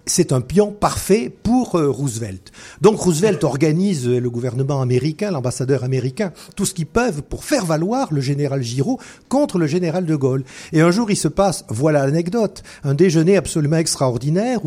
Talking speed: 175 wpm